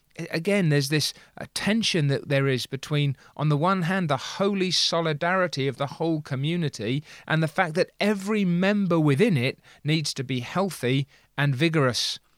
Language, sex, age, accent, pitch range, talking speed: English, male, 30-49, British, 135-175 Hz, 160 wpm